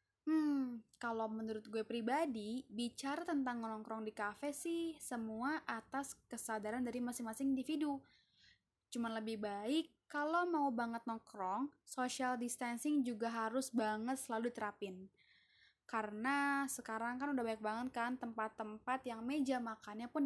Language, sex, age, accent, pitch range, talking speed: Indonesian, female, 10-29, native, 220-280 Hz, 125 wpm